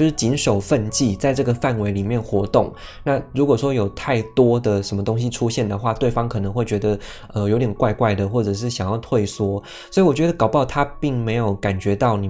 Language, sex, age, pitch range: Chinese, male, 20-39, 100-125 Hz